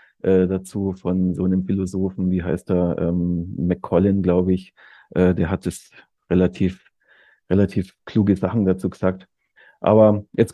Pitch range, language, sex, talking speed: 95-115 Hz, German, male, 135 wpm